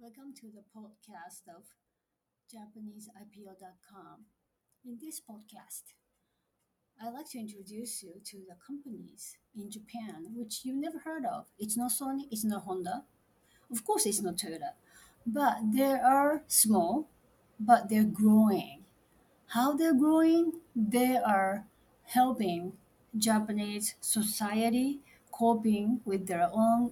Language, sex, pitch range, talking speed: English, female, 210-265 Hz, 120 wpm